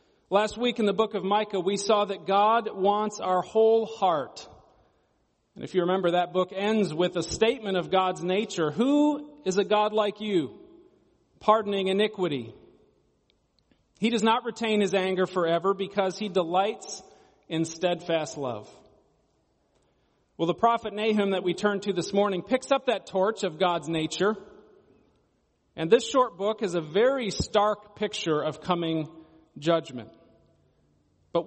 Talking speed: 150 wpm